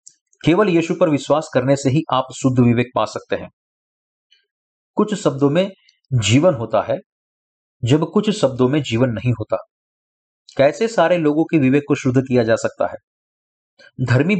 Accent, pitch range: native, 125-175 Hz